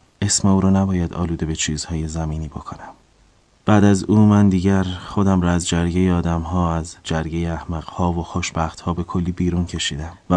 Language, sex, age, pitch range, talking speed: Persian, male, 30-49, 80-95 Hz, 185 wpm